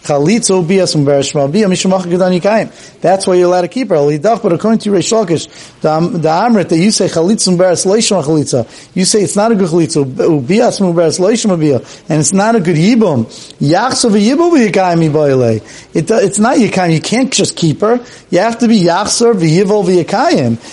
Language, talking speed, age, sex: English, 155 wpm, 40-59, male